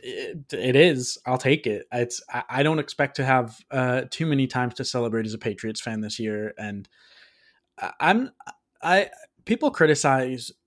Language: English